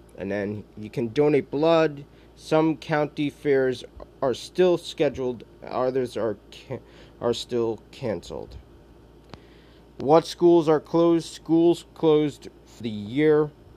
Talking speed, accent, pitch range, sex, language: 120 wpm, American, 115-150 Hz, male, English